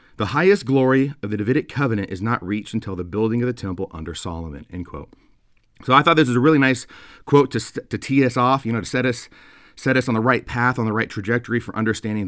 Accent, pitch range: American, 95-125 Hz